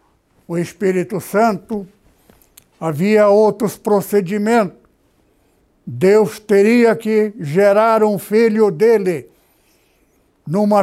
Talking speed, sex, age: 80 wpm, male, 60-79